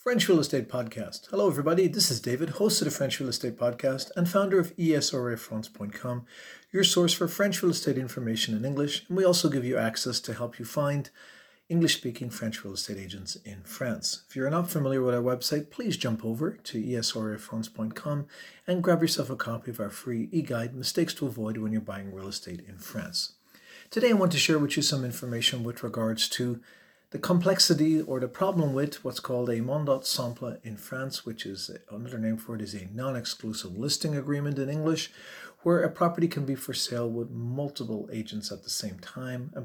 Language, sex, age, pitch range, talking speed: English, male, 40-59, 115-155 Hz, 195 wpm